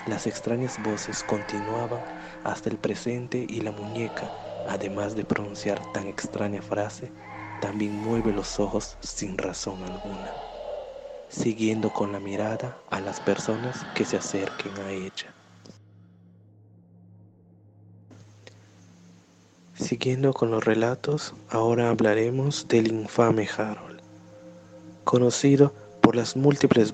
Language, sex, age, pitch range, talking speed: Spanish, male, 20-39, 105-125 Hz, 105 wpm